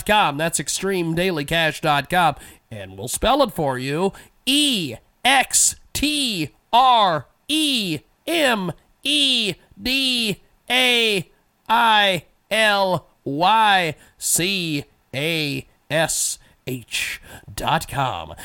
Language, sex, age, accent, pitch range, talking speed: English, male, 40-59, American, 160-210 Hz, 35 wpm